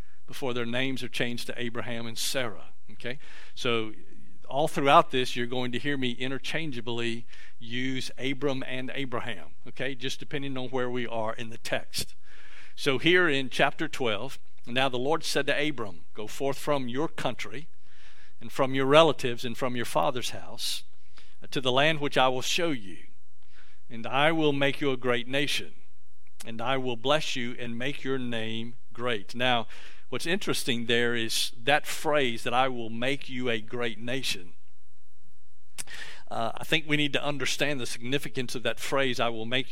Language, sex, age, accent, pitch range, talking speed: English, male, 50-69, American, 115-140 Hz, 175 wpm